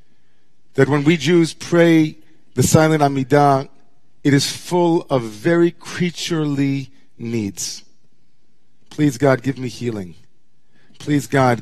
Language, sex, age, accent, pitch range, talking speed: English, male, 40-59, American, 120-150 Hz, 115 wpm